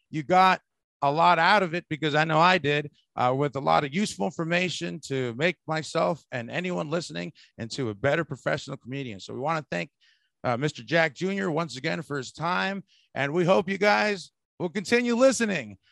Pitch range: 160-225 Hz